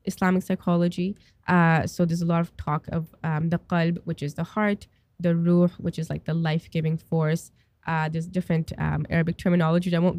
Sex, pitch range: female, 165-205 Hz